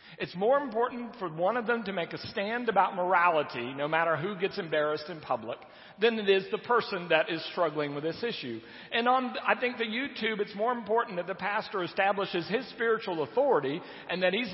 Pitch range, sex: 135-210 Hz, male